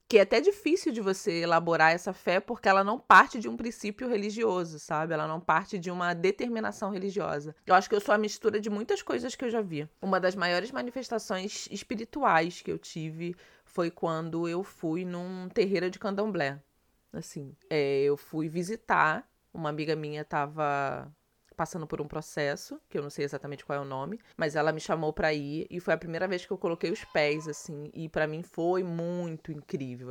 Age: 20-39